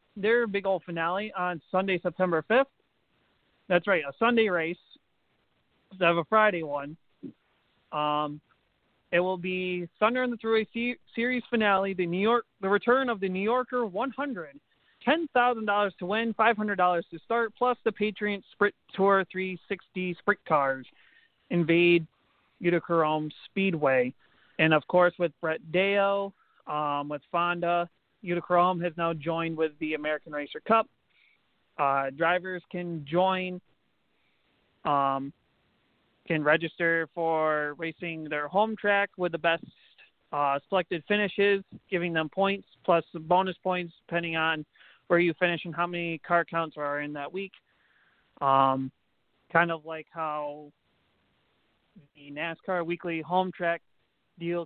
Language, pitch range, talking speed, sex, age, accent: English, 160-200 Hz, 145 wpm, male, 40-59, American